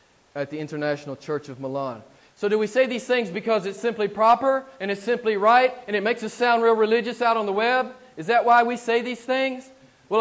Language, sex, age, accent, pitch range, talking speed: English, male, 40-59, American, 175-235 Hz, 230 wpm